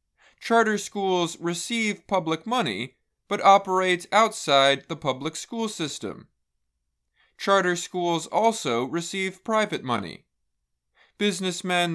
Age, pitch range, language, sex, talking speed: 20-39, 150-205 Hz, English, male, 95 wpm